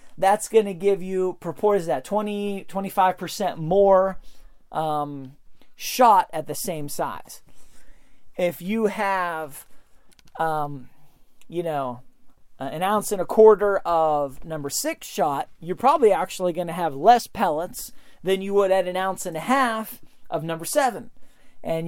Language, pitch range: English, 160-205 Hz